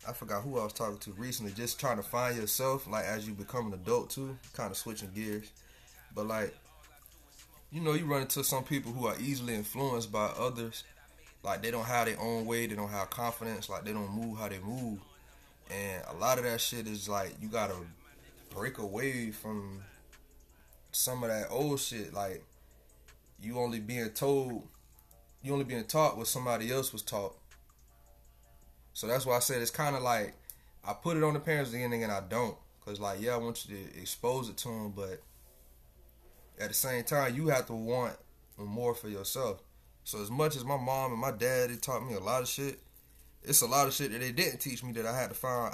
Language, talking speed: English, 215 wpm